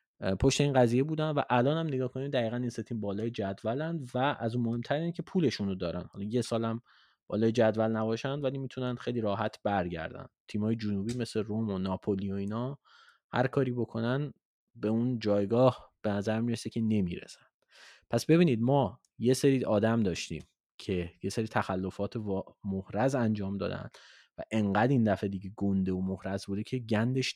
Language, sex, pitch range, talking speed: Persian, male, 105-130 Hz, 165 wpm